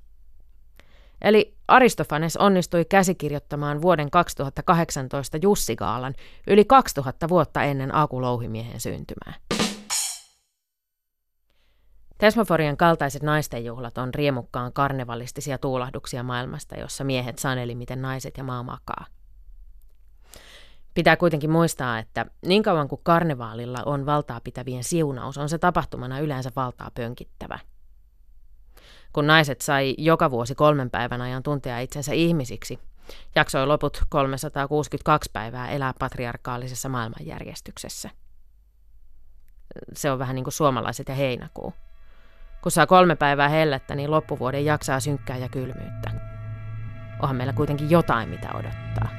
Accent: native